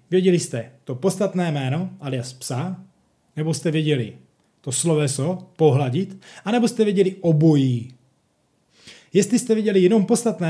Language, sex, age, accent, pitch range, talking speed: Czech, male, 20-39, native, 155-190 Hz, 125 wpm